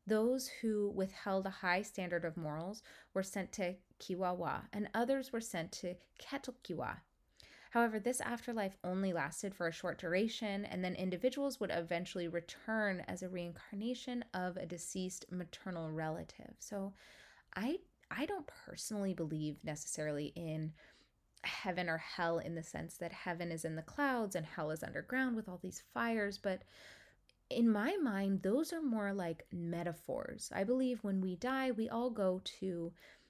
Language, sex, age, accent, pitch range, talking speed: English, female, 20-39, American, 175-225 Hz, 155 wpm